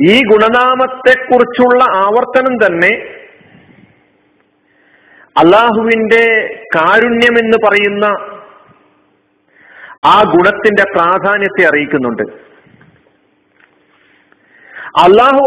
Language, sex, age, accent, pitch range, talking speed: Malayalam, male, 50-69, native, 215-265 Hz, 55 wpm